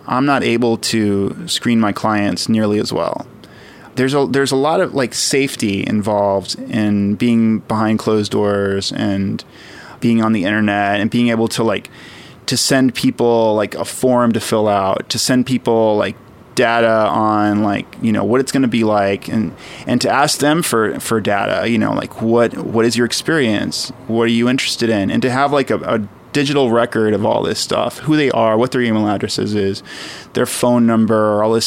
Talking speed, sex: 200 wpm, male